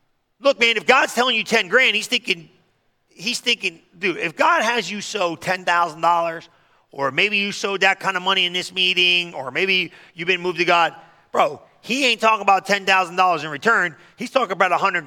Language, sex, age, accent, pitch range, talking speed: English, male, 40-59, American, 170-210 Hz, 195 wpm